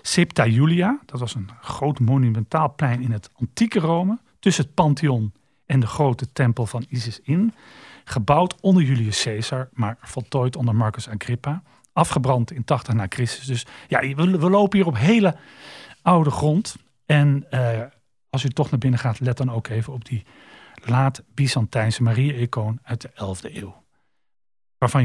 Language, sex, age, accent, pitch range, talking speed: Dutch, male, 40-59, Dutch, 120-180 Hz, 160 wpm